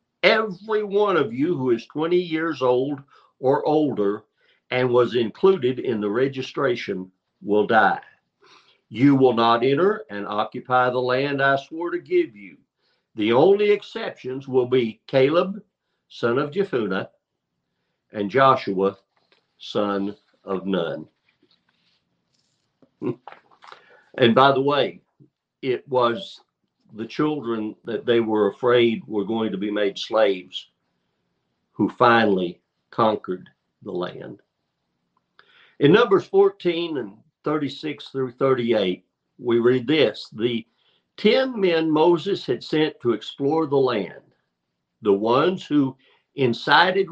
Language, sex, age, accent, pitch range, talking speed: English, male, 60-79, American, 110-155 Hz, 120 wpm